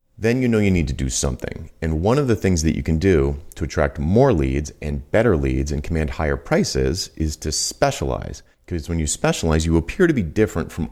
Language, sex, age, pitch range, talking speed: English, male, 40-59, 75-95 Hz, 225 wpm